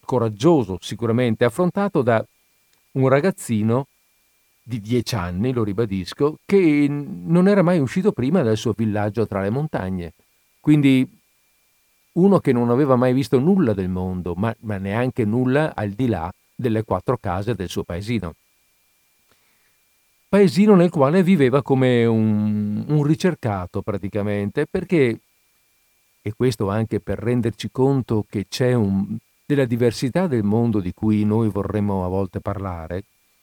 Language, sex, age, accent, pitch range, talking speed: Italian, male, 50-69, native, 105-145 Hz, 135 wpm